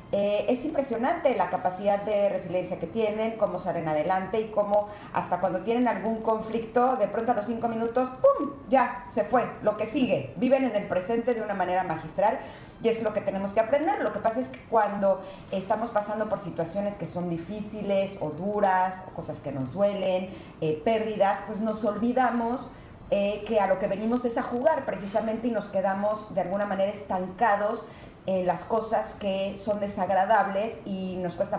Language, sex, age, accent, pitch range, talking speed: Spanish, female, 40-59, Mexican, 185-230 Hz, 185 wpm